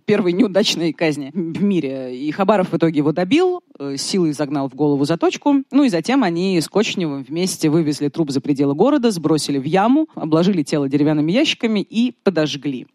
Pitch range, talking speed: 150-200 Hz, 170 wpm